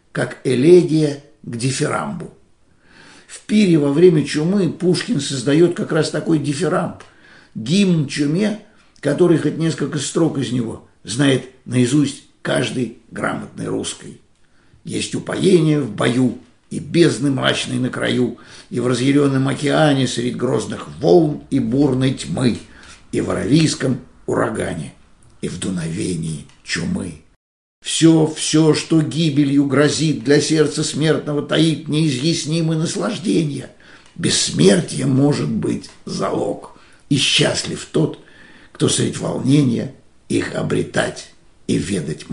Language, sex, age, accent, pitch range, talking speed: Russian, male, 60-79, native, 130-160 Hz, 115 wpm